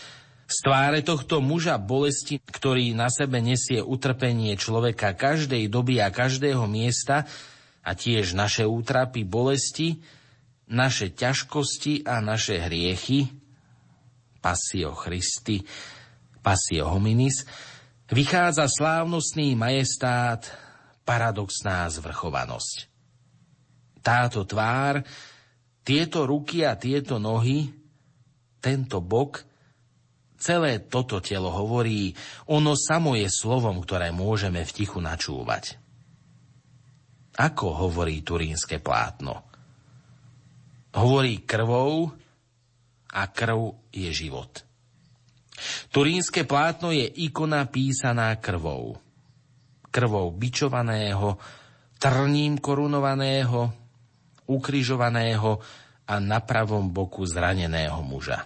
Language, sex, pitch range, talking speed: Slovak, male, 110-140 Hz, 85 wpm